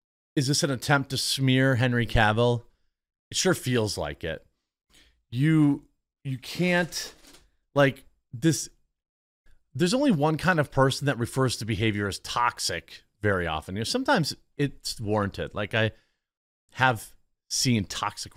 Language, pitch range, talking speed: English, 100-140 Hz, 135 wpm